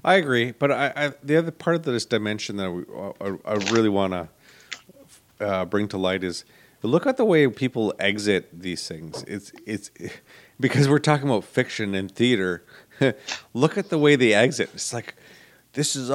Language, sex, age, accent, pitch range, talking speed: English, male, 40-59, American, 105-140 Hz, 185 wpm